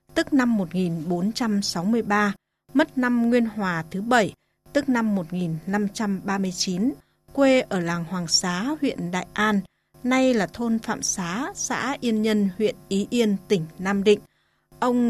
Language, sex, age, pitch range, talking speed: Vietnamese, female, 20-39, 190-240 Hz, 140 wpm